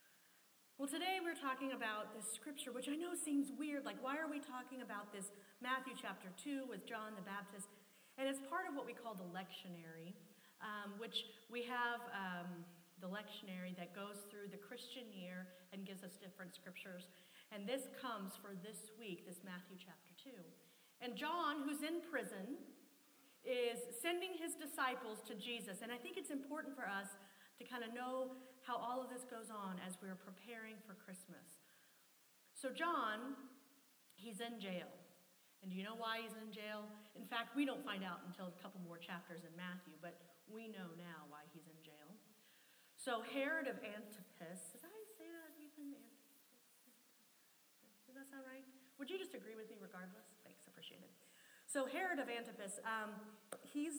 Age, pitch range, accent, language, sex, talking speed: 40-59, 195-265 Hz, American, English, female, 180 wpm